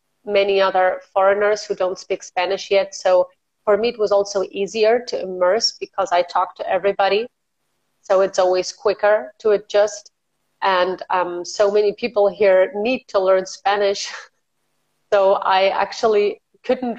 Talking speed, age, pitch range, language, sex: 150 wpm, 30-49, 180-205 Hz, German, female